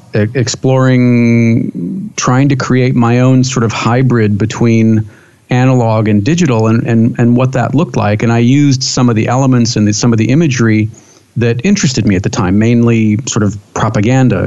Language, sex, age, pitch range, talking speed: English, male, 40-59, 110-130 Hz, 180 wpm